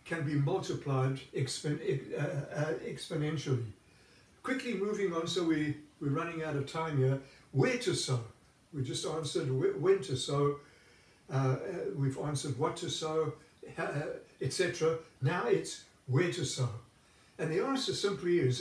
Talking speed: 130 wpm